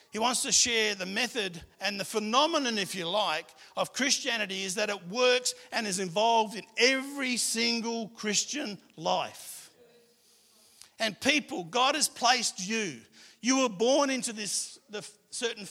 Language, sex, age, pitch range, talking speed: English, male, 50-69, 195-245 Hz, 150 wpm